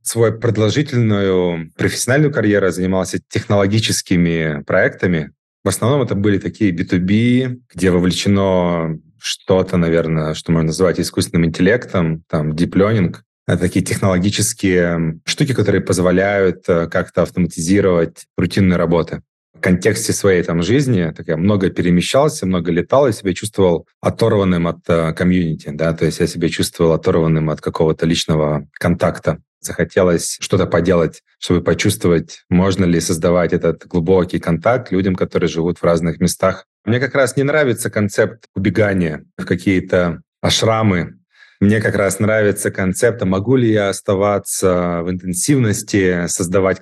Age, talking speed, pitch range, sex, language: 20-39, 130 wpm, 85-105 Hz, male, Russian